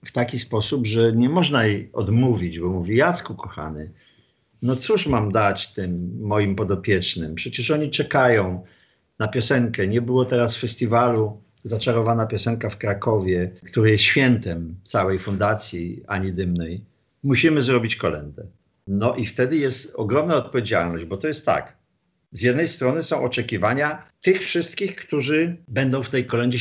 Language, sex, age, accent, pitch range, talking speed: Polish, male, 50-69, native, 100-125 Hz, 145 wpm